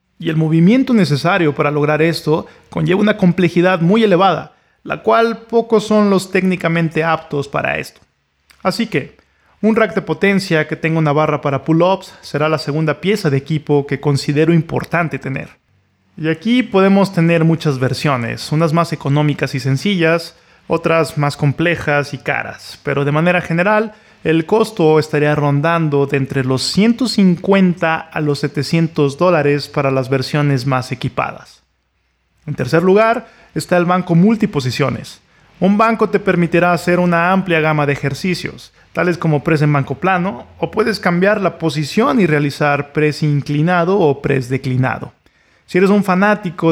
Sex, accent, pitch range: male, Mexican, 145-185 Hz